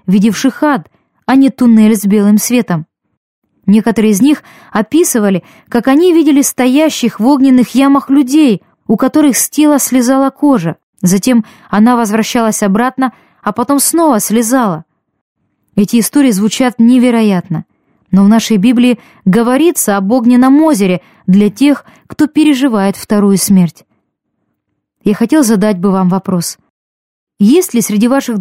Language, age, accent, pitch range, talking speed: Russian, 20-39, native, 210-275 Hz, 130 wpm